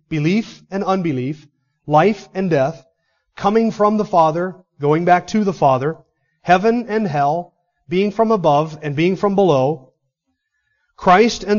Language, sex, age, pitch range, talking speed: English, male, 30-49, 150-205 Hz, 140 wpm